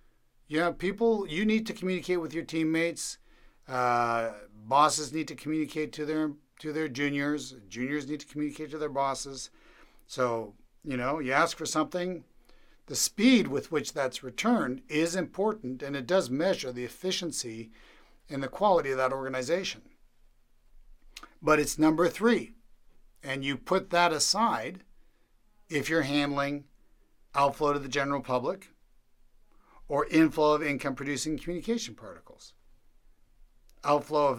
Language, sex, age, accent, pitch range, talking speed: English, male, 60-79, American, 130-155 Hz, 140 wpm